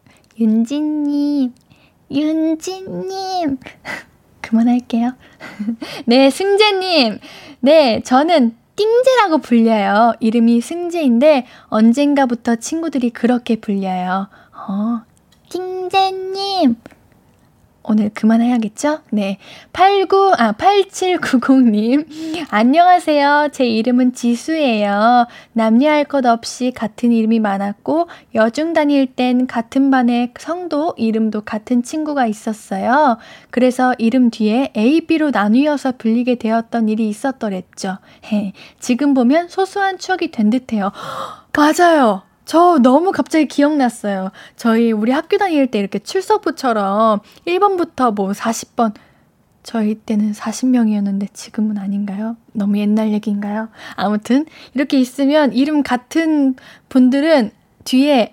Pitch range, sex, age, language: 220-300 Hz, female, 10-29, Korean